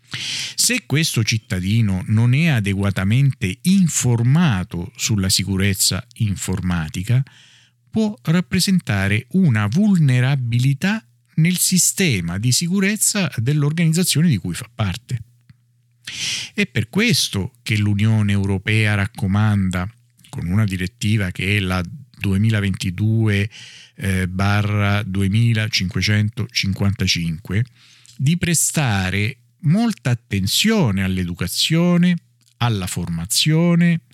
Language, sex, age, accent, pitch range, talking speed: Italian, male, 50-69, native, 100-150 Hz, 80 wpm